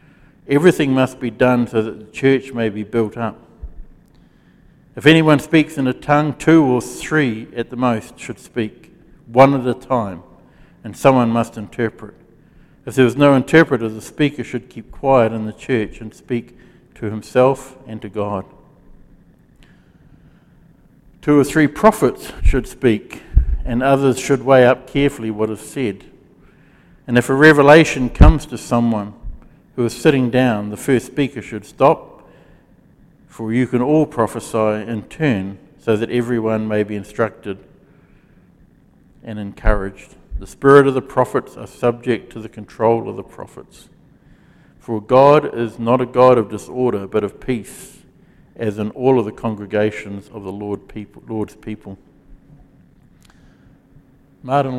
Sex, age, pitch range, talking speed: male, 60-79, 110-135 Hz, 150 wpm